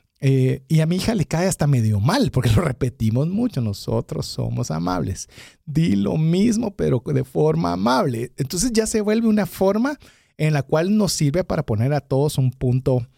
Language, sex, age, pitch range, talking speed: Spanish, male, 40-59, 135-205 Hz, 185 wpm